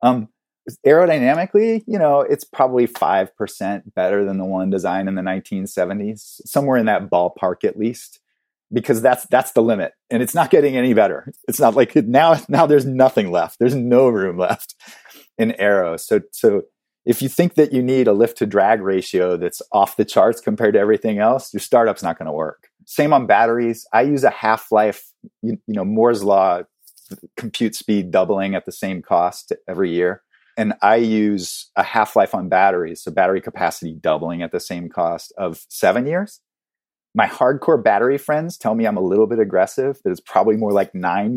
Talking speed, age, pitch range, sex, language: 185 wpm, 30-49, 95-135 Hz, male, English